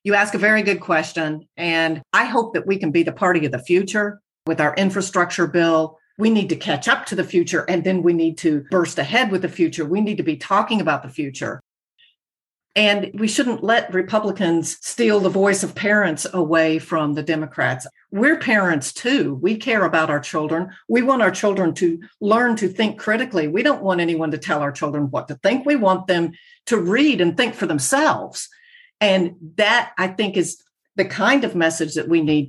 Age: 50-69